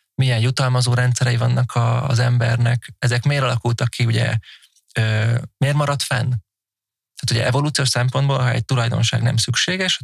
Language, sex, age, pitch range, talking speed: Hungarian, male, 20-39, 120-135 Hz, 145 wpm